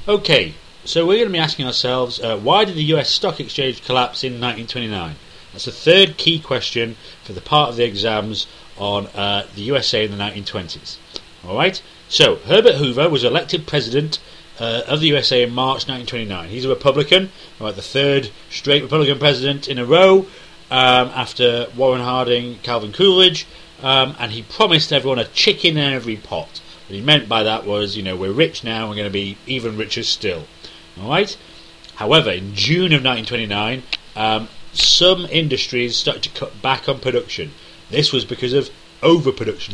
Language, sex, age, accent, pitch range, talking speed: English, male, 30-49, British, 110-150 Hz, 175 wpm